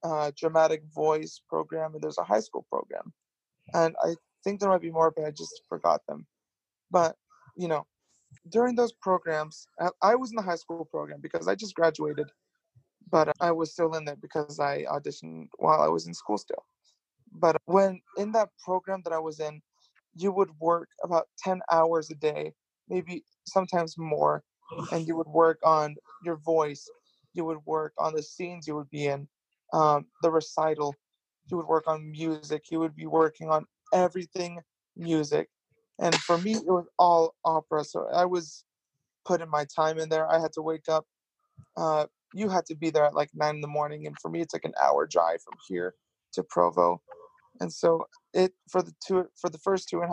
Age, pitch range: 20-39, 155-175 Hz